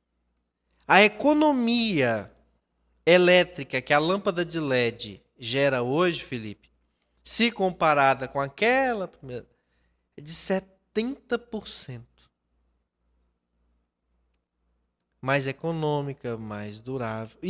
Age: 20-39